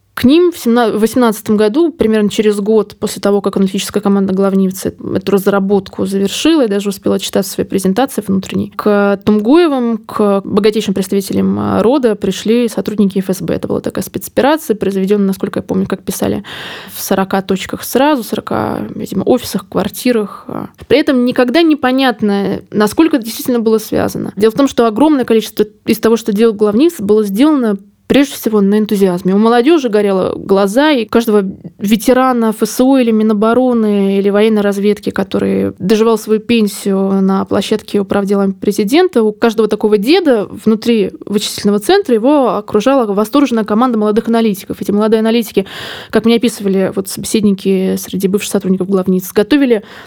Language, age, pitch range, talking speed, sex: Russian, 20-39, 200-235 Hz, 150 wpm, female